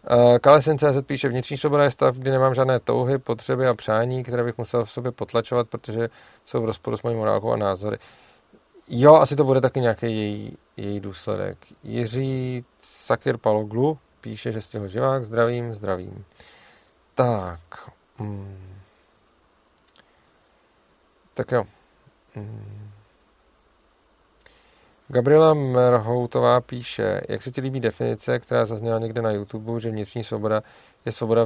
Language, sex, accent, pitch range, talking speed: Czech, male, native, 110-140 Hz, 135 wpm